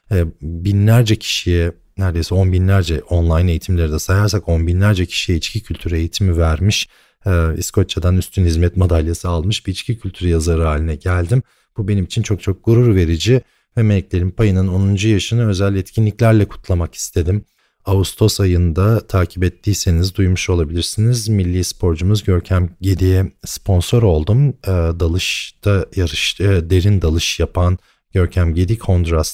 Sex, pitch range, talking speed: male, 85-100 Hz, 135 wpm